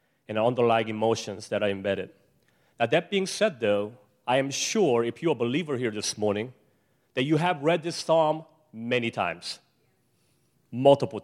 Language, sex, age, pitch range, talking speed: English, male, 30-49, 120-165 Hz, 160 wpm